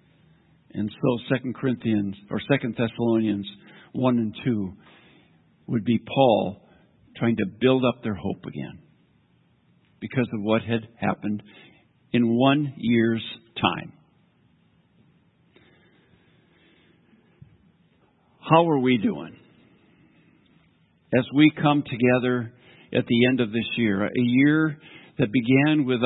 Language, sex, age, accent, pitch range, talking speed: English, male, 60-79, American, 110-140 Hz, 110 wpm